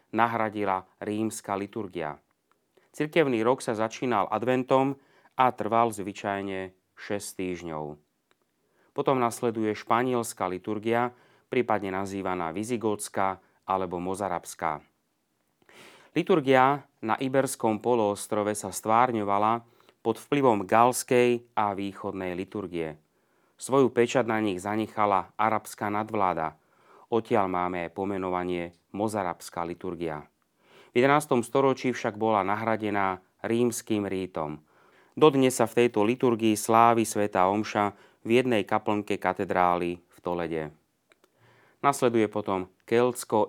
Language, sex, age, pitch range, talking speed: Slovak, male, 30-49, 95-120 Hz, 100 wpm